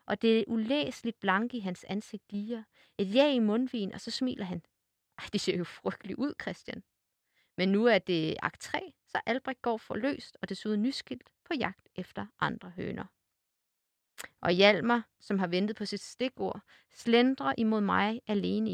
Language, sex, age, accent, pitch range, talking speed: Danish, female, 30-49, native, 180-230 Hz, 170 wpm